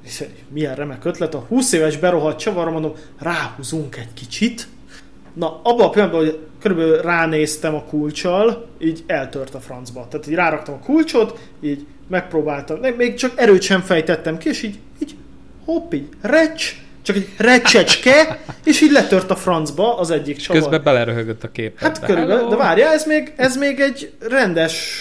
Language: Hungarian